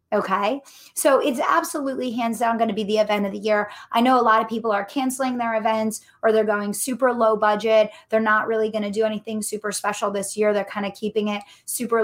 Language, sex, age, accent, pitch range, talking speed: English, female, 20-39, American, 210-255 Hz, 235 wpm